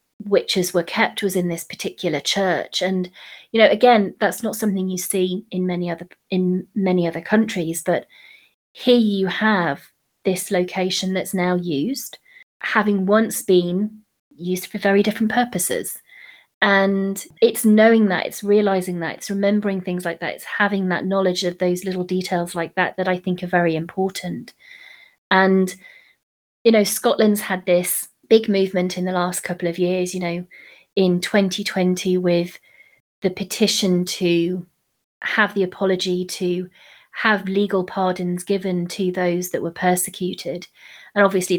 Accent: British